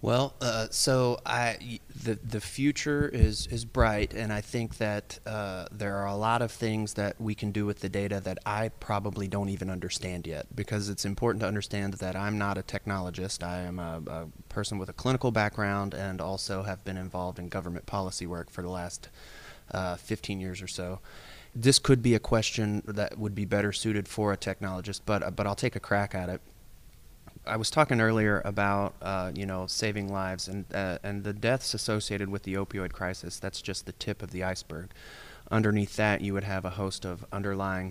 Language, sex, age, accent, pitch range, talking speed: English, male, 20-39, American, 95-105 Hz, 205 wpm